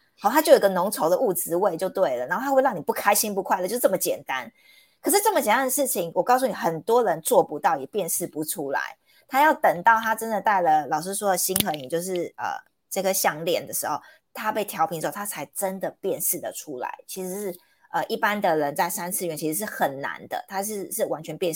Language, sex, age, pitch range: Chinese, female, 30-49, 180-250 Hz